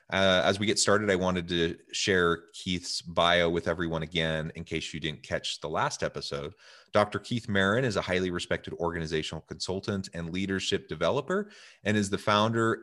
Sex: male